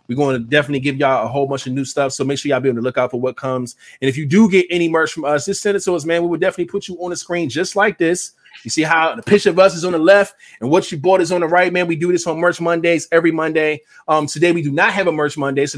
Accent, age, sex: American, 20-39, male